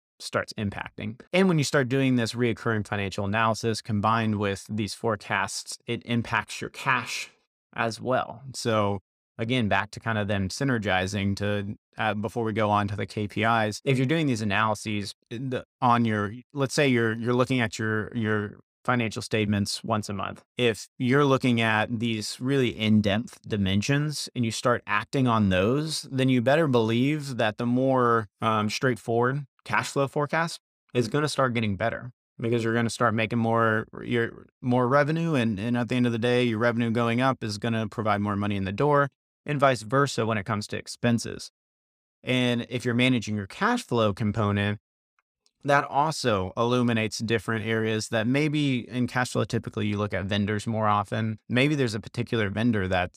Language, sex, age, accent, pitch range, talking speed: English, male, 30-49, American, 105-125 Hz, 180 wpm